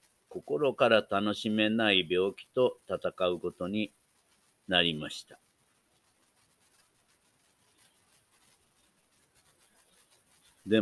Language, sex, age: Japanese, male, 50-69